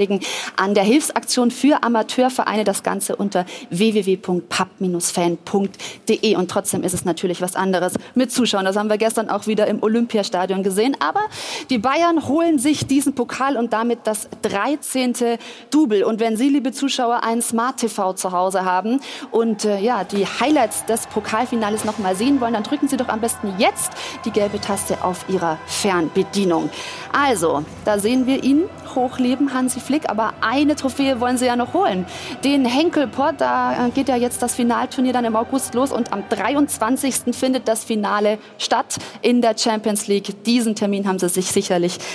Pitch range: 185-255 Hz